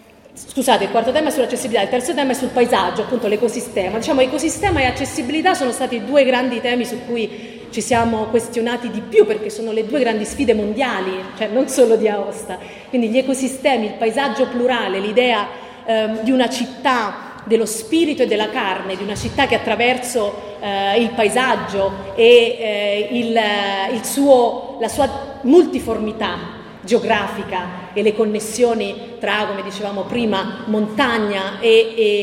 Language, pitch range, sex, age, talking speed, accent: Italian, 210-255 Hz, female, 30-49, 155 wpm, native